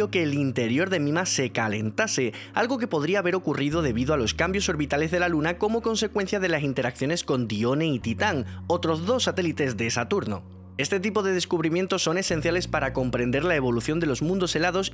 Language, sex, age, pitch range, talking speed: Spanish, male, 20-39, 130-195 Hz, 195 wpm